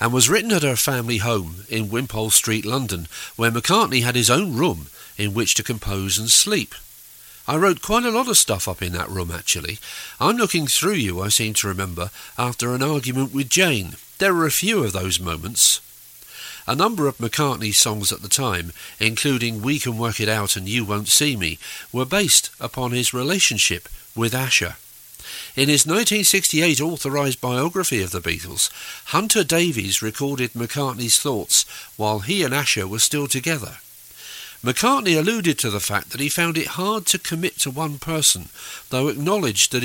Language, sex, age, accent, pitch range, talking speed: English, male, 50-69, British, 105-155 Hz, 180 wpm